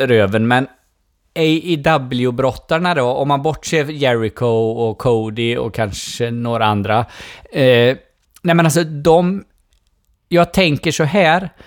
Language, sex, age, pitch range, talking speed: Swedish, male, 20-39, 115-150 Hz, 120 wpm